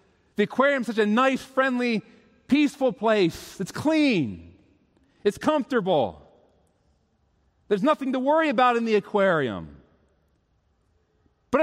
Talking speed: 115 wpm